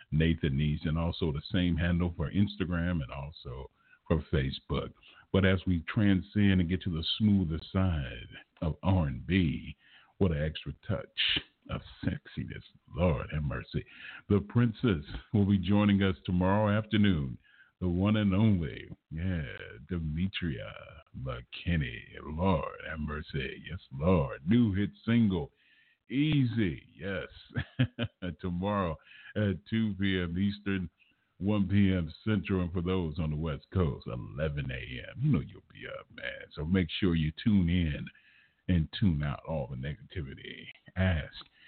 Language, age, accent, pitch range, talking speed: English, 50-69, American, 80-100 Hz, 135 wpm